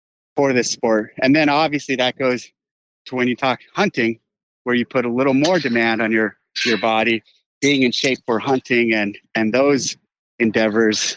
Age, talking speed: 30-49, 175 wpm